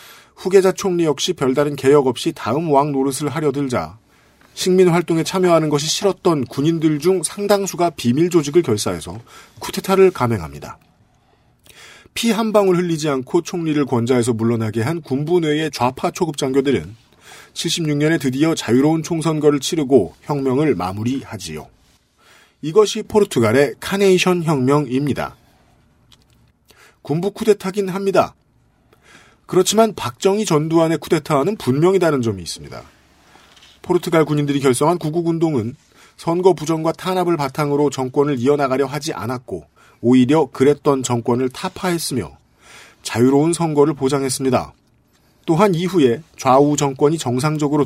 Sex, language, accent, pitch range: male, Korean, native, 130-175 Hz